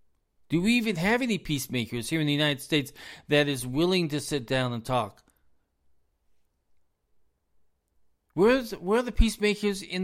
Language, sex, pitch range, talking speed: English, male, 115-195 Hz, 145 wpm